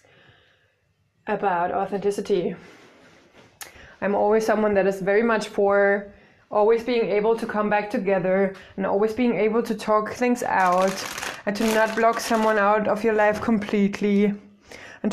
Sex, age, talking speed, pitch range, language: female, 20-39, 145 wpm, 195-230 Hz, English